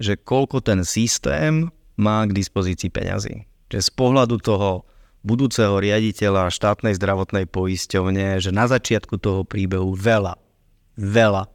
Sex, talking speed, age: male, 125 wpm, 30-49